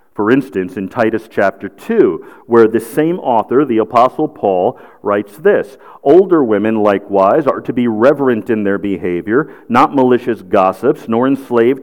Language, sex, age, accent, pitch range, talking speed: English, male, 50-69, American, 110-155 Hz, 150 wpm